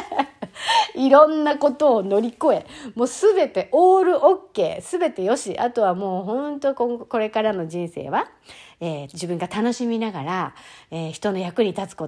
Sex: female